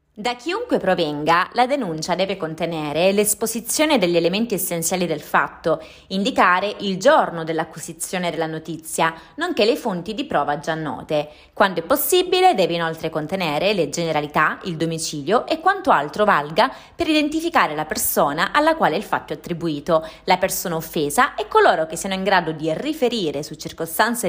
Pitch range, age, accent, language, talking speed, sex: 160-235 Hz, 20-39, native, Italian, 155 wpm, female